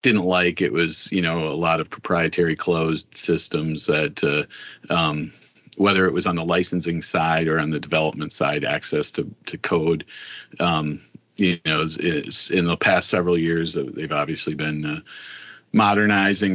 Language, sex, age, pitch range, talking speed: English, male, 40-59, 80-90 Hz, 165 wpm